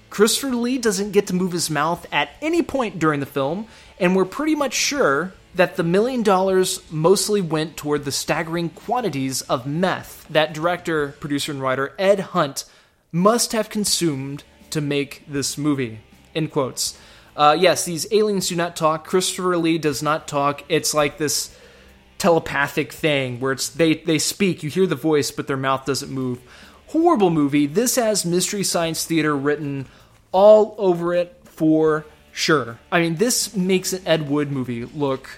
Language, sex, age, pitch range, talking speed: English, male, 20-39, 140-185 Hz, 170 wpm